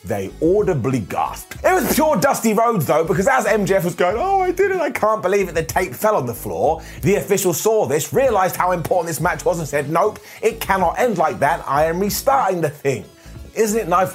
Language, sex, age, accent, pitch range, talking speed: English, male, 30-49, British, 150-205 Hz, 230 wpm